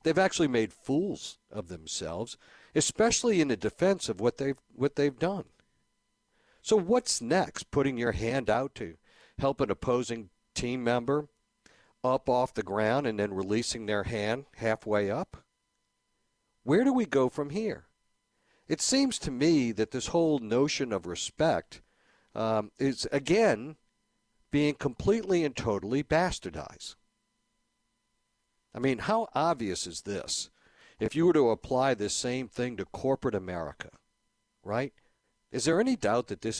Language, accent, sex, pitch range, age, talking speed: English, American, male, 110-145 Hz, 60-79, 145 wpm